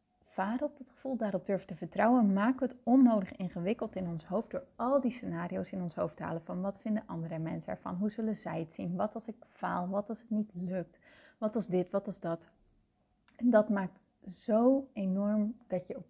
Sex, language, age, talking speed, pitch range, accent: female, Dutch, 30-49, 220 wpm, 190-245 Hz, Dutch